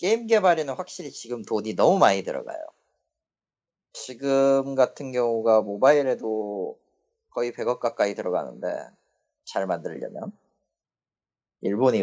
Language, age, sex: Korean, 30-49, male